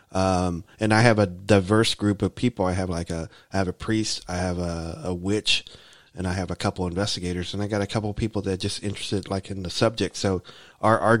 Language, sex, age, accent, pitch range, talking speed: English, male, 20-39, American, 90-105 Hz, 250 wpm